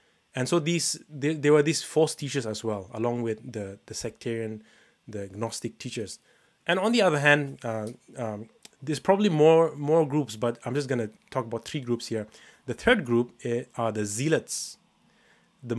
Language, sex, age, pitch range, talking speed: English, male, 20-39, 115-135 Hz, 180 wpm